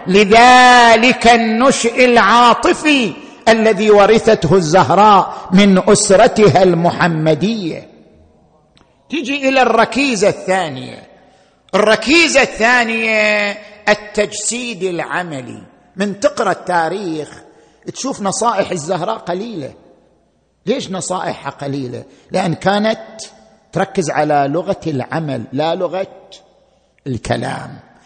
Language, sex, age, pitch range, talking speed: Arabic, male, 50-69, 190-255 Hz, 75 wpm